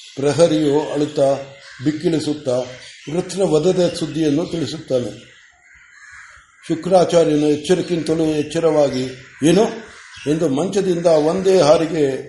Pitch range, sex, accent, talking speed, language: 145-180 Hz, male, native, 75 wpm, Kannada